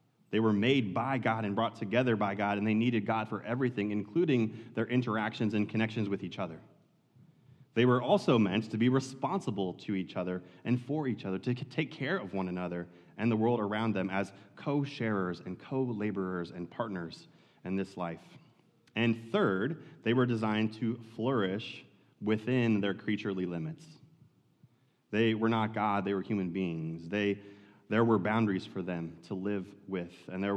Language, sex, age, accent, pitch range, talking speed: English, male, 30-49, American, 100-120 Hz, 175 wpm